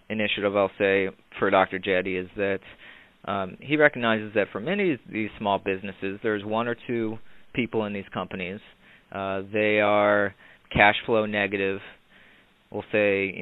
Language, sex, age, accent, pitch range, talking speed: English, male, 30-49, American, 100-110 Hz, 155 wpm